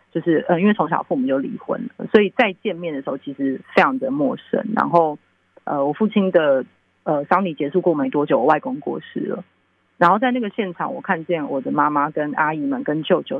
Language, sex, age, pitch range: Chinese, female, 30-49, 150-220 Hz